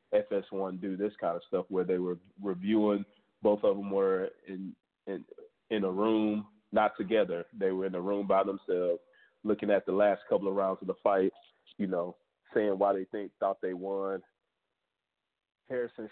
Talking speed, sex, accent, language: 180 wpm, male, American, English